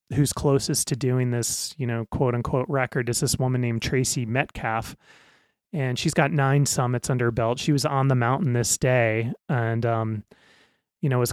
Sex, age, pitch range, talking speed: male, 30-49, 120-135 Hz, 190 wpm